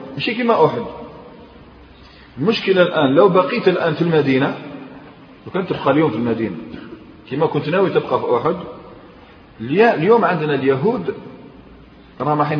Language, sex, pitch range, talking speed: Arabic, male, 140-210 Hz, 120 wpm